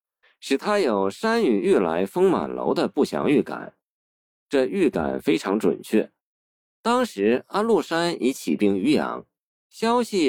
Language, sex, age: Chinese, male, 50-69